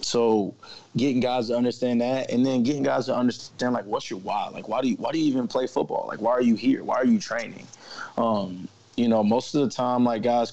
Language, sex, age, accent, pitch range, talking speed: English, male, 20-39, American, 105-125 Hz, 250 wpm